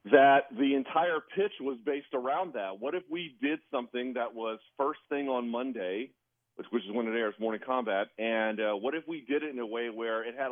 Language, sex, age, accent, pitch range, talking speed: English, male, 40-59, American, 115-145 Hz, 230 wpm